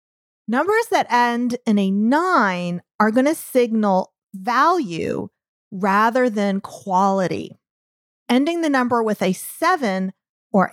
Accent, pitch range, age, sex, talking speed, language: American, 195-255 Hz, 40-59, female, 110 wpm, English